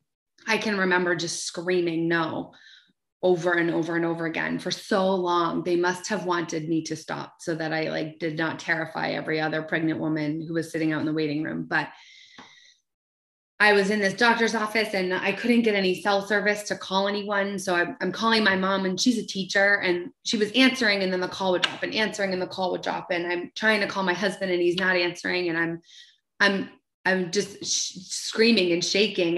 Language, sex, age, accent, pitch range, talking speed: English, female, 20-39, American, 175-200 Hz, 210 wpm